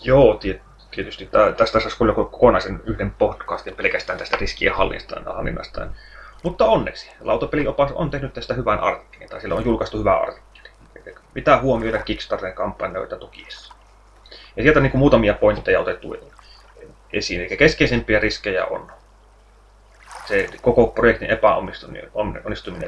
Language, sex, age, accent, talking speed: Finnish, male, 30-49, native, 130 wpm